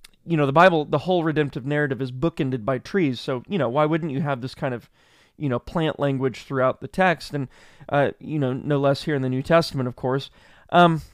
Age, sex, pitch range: 30-49, male, 140-180 Hz